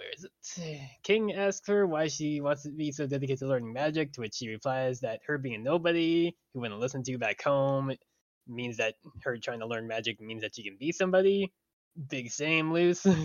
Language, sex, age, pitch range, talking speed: English, male, 20-39, 120-165 Hz, 220 wpm